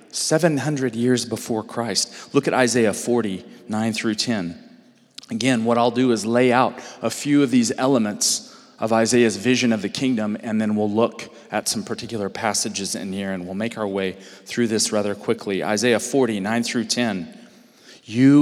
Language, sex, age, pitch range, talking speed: English, male, 40-59, 105-130 Hz, 175 wpm